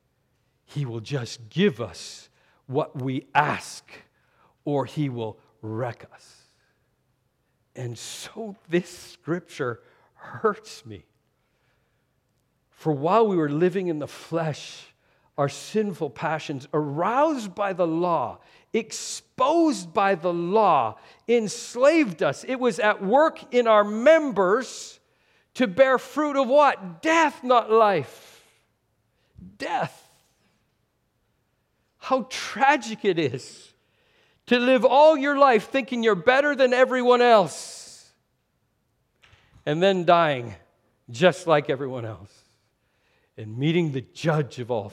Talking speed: 110 wpm